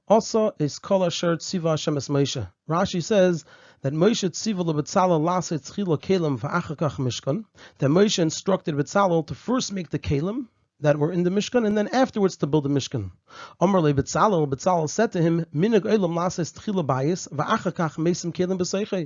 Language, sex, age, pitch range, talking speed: English, male, 30-49, 155-200 Hz, 85 wpm